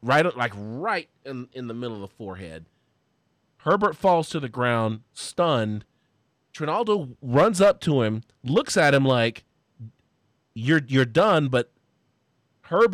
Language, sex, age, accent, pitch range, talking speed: English, male, 30-49, American, 120-160 Hz, 140 wpm